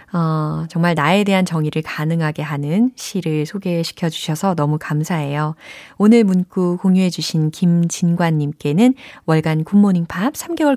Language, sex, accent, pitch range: Korean, female, native, 155-235 Hz